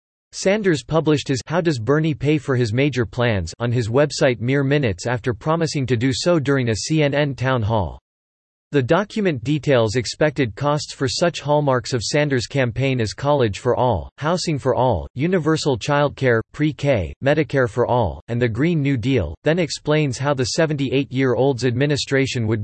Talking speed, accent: 165 wpm, American